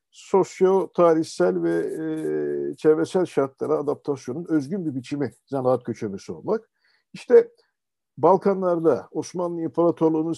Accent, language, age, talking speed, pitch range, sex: native, Turkish, 50-69, 95 wpm, 145-185 Hz, male